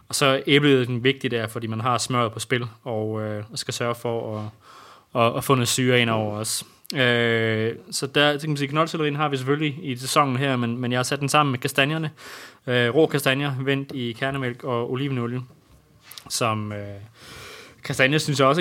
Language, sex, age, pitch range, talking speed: Danish, male, 20-39, 115-135 Hz, 190 wpm